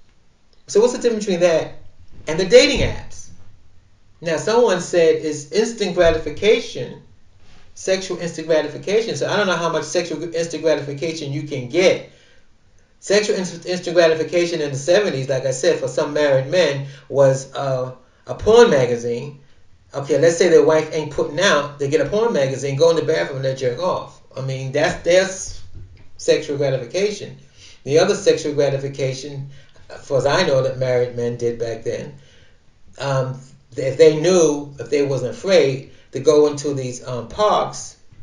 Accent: American